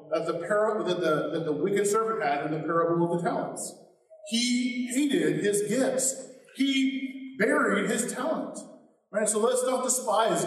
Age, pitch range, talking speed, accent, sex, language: 40-59, 185-225 Hz, 170 wpm, American, male, English